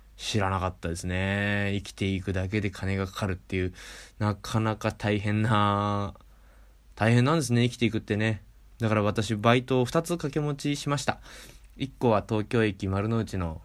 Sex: male